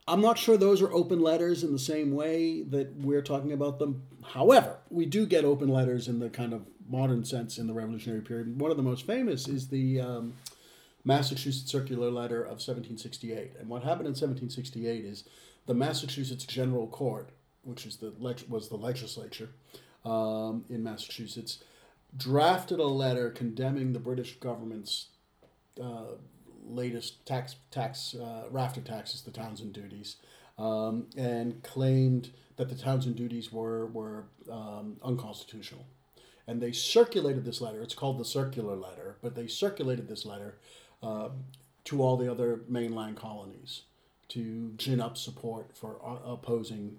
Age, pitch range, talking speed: 40-59, 115-135 Hz, 155 wpm